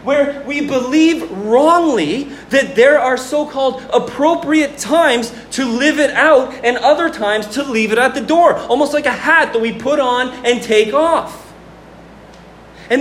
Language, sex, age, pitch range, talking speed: English, male, 30-49, 205-285 Hz, 160 wpm